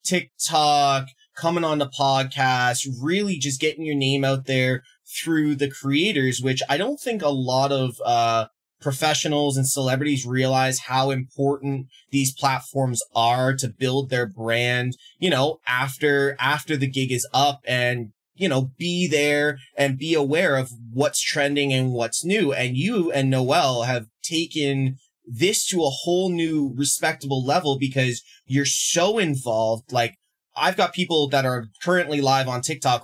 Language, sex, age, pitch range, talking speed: English, male, 20-39, 130-150 Hz, 155 wpm